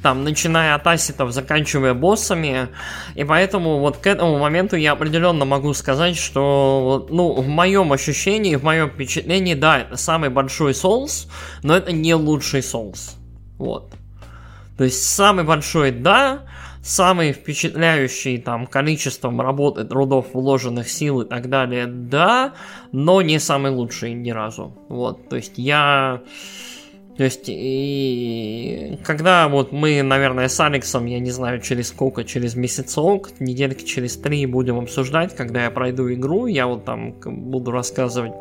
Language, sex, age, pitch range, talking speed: Russian, male, 20-39, 125-155 Hz, 145 wpm